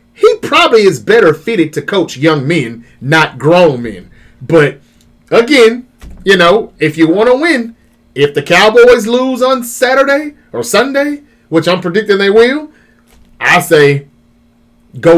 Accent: American